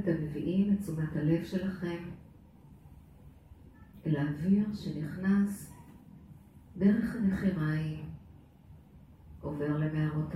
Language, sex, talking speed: Hebrew, female, 75 wpm